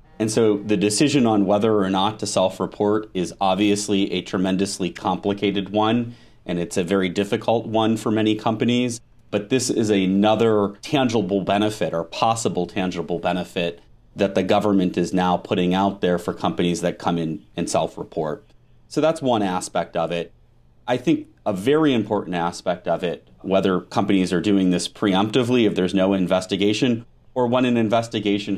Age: 30-49